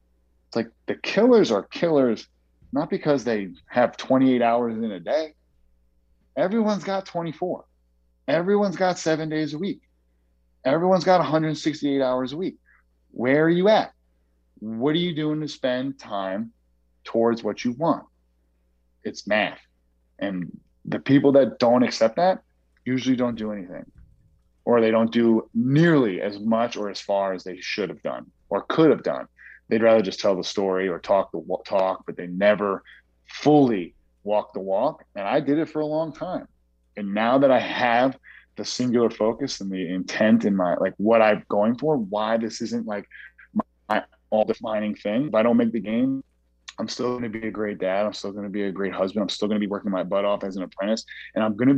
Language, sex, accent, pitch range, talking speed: English, male, American, 90-130 Hz, 190 wpm